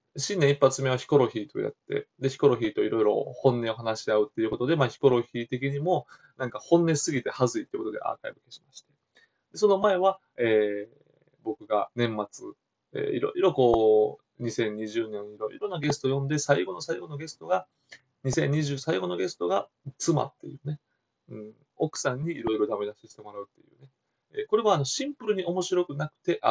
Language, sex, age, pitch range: Japanese, male, 20-39, 115-180 Hz